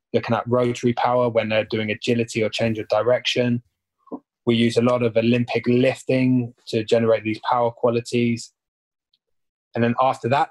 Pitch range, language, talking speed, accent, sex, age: 110-120 Hz, English, 160 wpm, British, male, 20-39